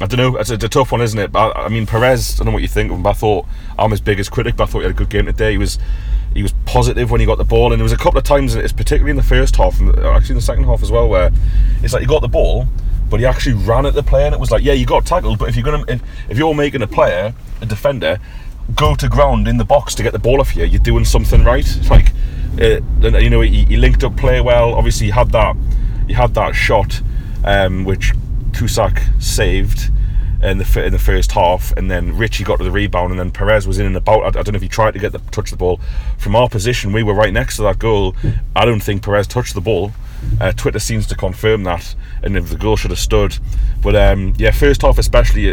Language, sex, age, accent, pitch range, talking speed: English, male, 30-49, British, 100-120 Hz, 280 wpm